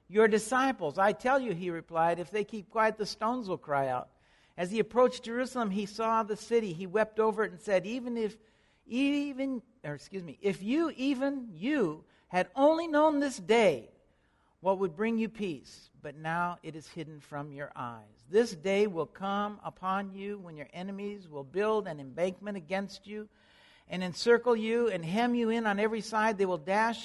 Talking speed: 190 wpm